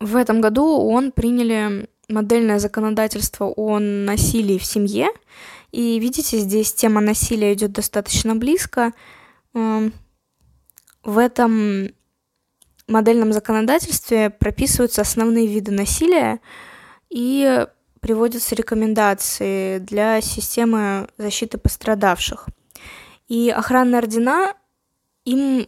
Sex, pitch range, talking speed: female, 210-245 Hz, 90 wpm